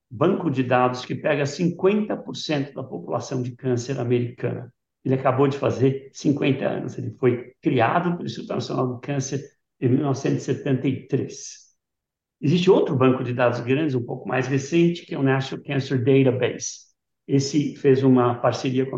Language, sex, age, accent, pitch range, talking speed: Portuguese, male, 60-79, Brazilian, 125-155 Hz, 150 wpm